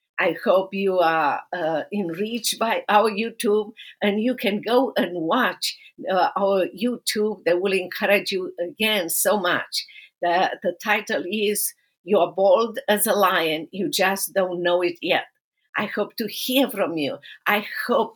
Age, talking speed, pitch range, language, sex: 50-69, 160 wpm, 180-225 Hz, English, female